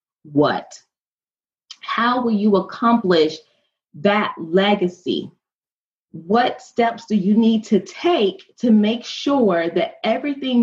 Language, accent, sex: English, American, female